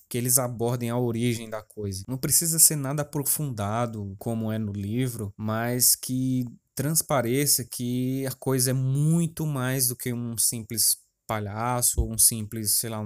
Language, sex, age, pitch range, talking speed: Portuguese, male, 20-39, 110-130 Hz, 160 wpm